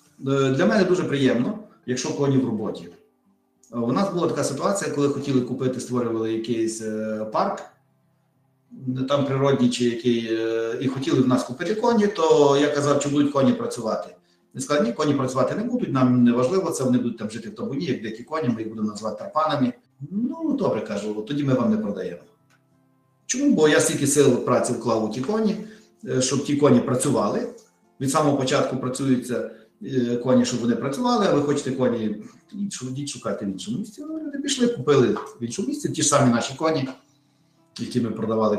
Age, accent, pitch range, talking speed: 50-69, native, 125-160 Hz, 175 wpm